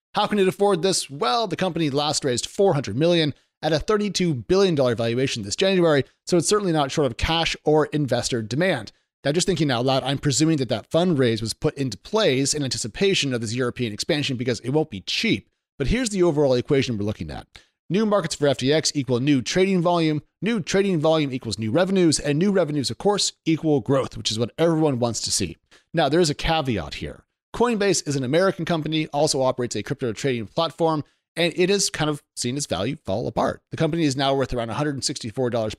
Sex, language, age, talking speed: male, English, 40-59, 210 wpm